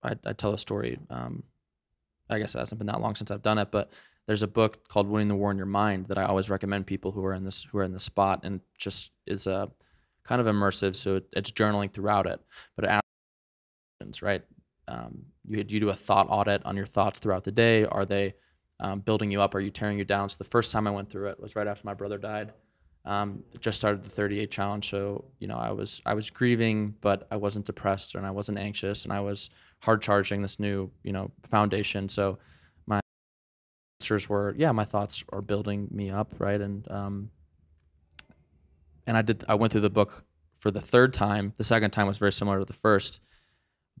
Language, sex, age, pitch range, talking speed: English, male, 20-39, 95-105 Hz, 225 wpm